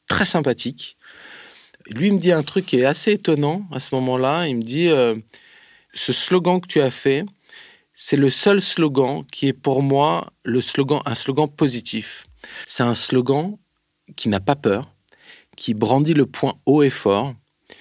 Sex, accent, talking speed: male, French, 180 wpm